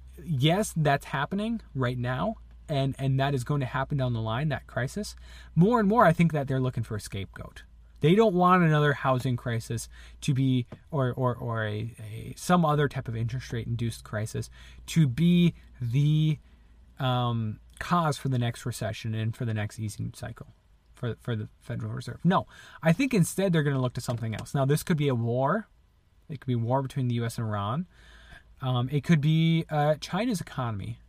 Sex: male